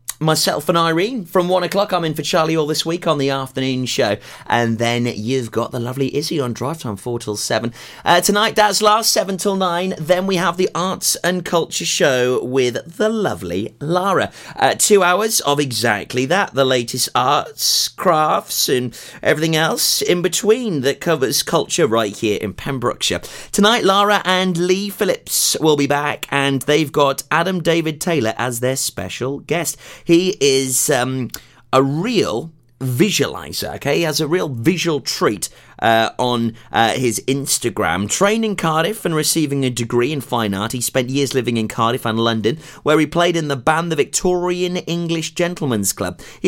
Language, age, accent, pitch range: English, 30-49, British, 125-170 Hz